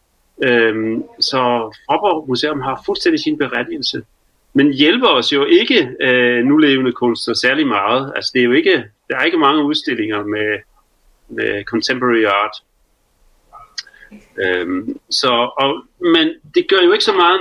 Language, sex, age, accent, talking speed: Danish, male, 40-59, native, 150 wpm